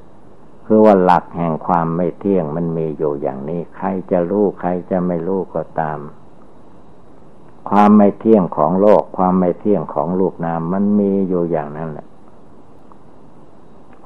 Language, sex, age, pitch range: Thai, male, 60-79, 80-95 Hz